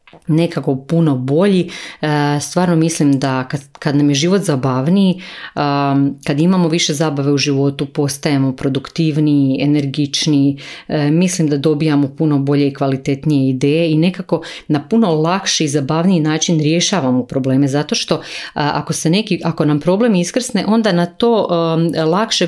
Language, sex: Croatian, female